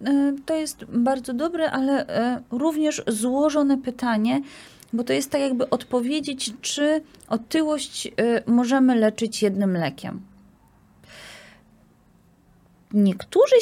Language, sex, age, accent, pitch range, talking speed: Polish, female, 30-49, native, 200-260 Hz, 95 wpm